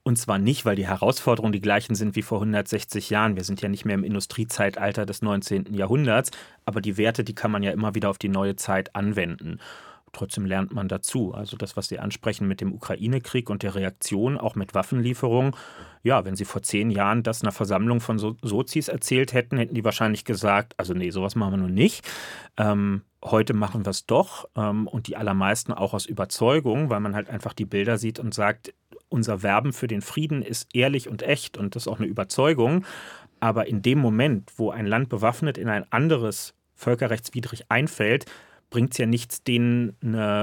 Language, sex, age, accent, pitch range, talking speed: German, male, 30-49, German, 100-120 Hz, 200 wpm